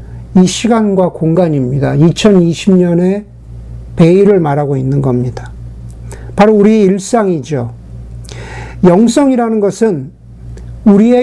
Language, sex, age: Korean, male, 50-69